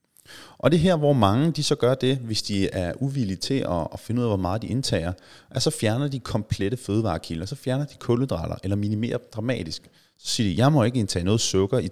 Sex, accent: male, native